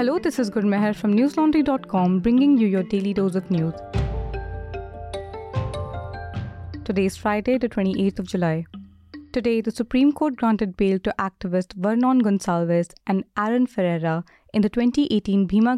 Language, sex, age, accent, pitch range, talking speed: English, female, 20-39, Indian, 180-230 Hz, 140 wpm